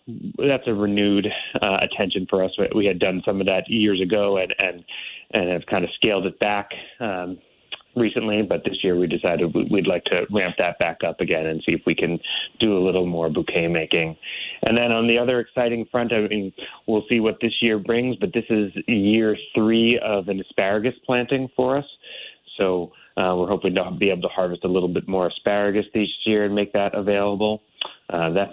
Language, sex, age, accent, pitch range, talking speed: English, male, 30-49, American, 95-110 Hz, 205 wpm